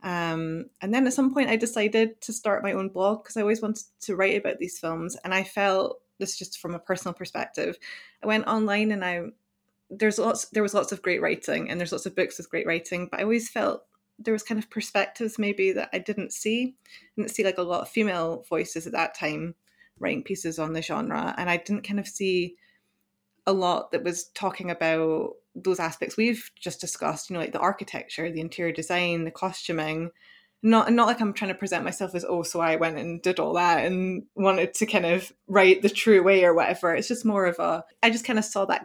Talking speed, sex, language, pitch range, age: 230 wpm, female, English, 170-215 Hz, 20-39